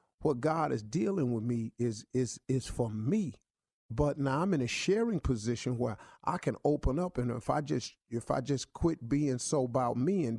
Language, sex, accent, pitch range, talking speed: English, male, American, 130-185 Hz, 210 wpm